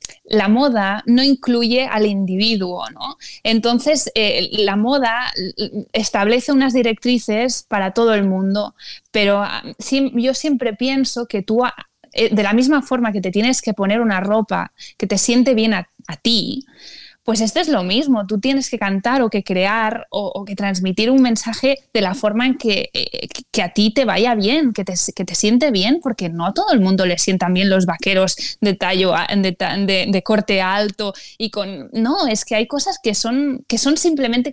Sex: female